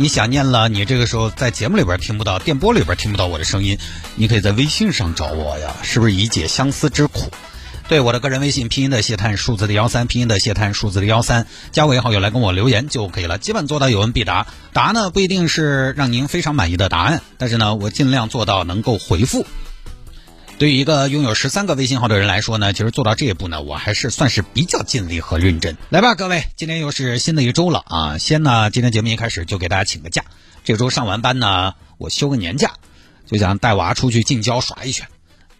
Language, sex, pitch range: Chinese, male, 100-135 Hz